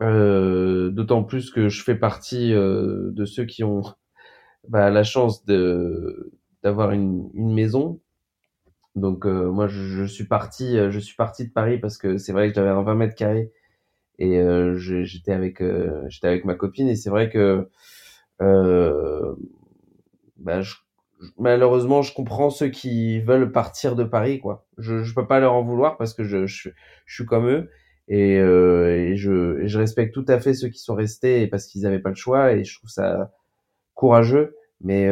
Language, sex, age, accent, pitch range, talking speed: French, male, 20-39, French, 95-120 Hz, 190 wpm